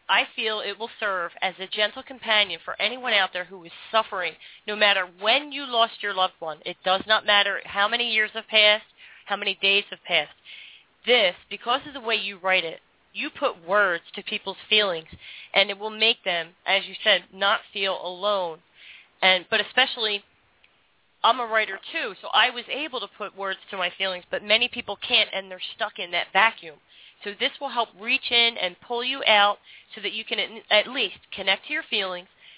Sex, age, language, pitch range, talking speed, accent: female, 40-59, English, 190-230 Hz, 205 wpm, American